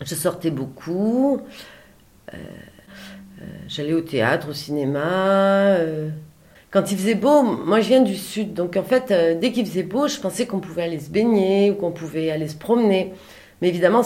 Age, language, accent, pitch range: 40-59, French, French, 150-200 Hz